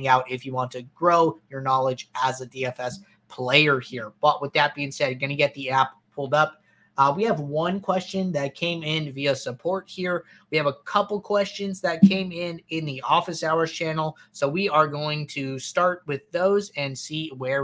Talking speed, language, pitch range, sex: 205 wpm, English, 135-175 Hz, male